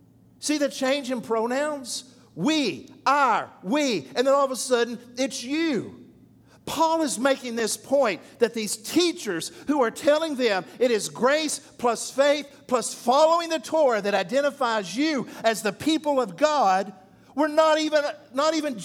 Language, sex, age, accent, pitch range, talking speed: English, male, 50-69, American, 220-300 Hz, 155 wpm